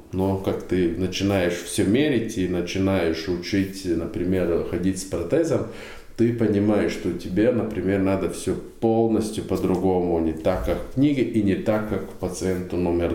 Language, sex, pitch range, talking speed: Russian, male, 95-115 Hz, 145 wpm